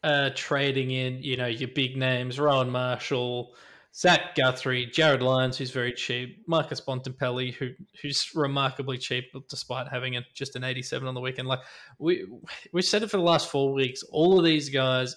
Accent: Australian